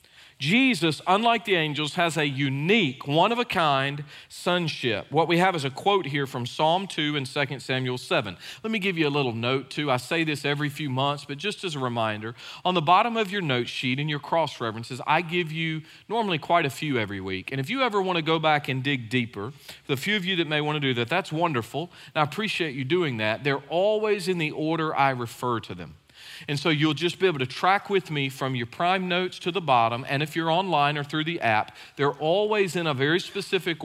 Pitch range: 135-185 Hz